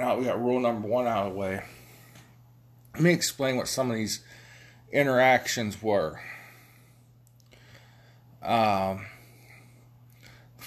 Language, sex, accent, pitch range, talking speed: English, male, American, 100-120 Hz, 120 wpm